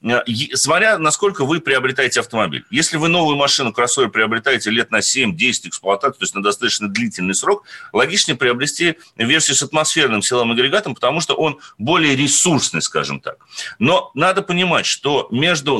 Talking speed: 150 wpm